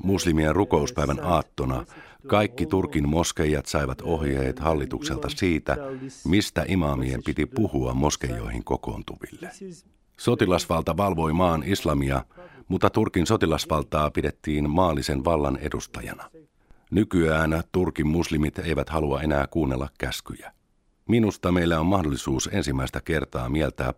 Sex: male